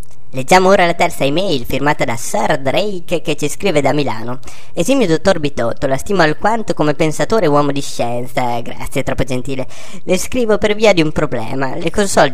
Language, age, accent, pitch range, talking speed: Italian, 20-39, native, 130-175 Hz, 190 wpm